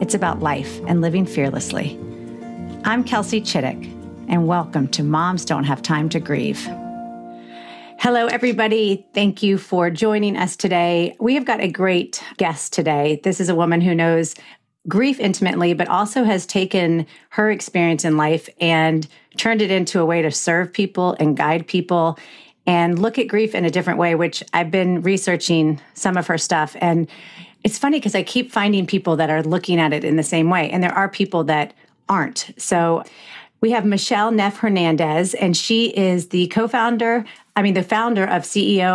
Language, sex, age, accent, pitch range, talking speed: English, female, 40-59, American, 165-210 Hz, 180 wpm